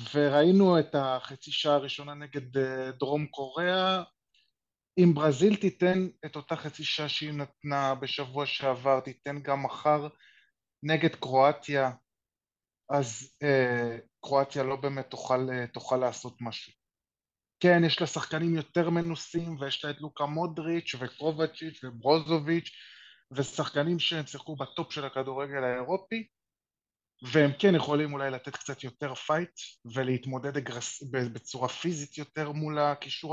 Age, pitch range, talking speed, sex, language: 20-39, 135-155 Hz, 120 wpm, male, Hebrew